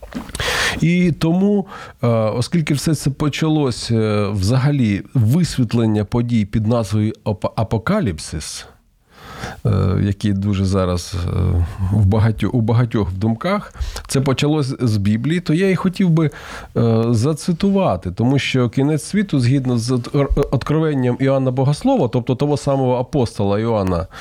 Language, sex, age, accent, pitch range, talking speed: Ukrainian, male, 40-59, native, 100-140 Hz, 105 wpm